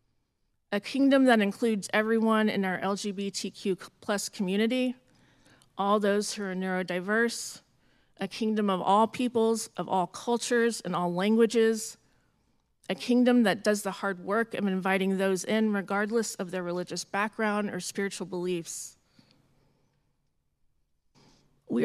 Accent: American